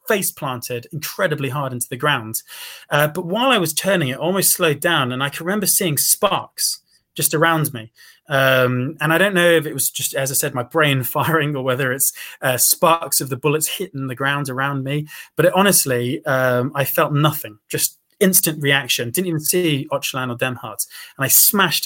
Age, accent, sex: 20-39, British, male